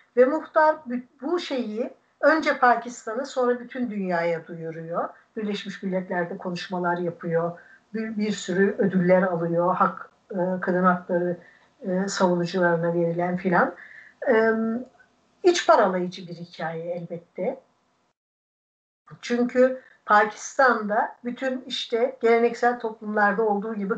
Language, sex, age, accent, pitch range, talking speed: Turkish, female, 60-79, native, 200-260 Hz, 95 wpm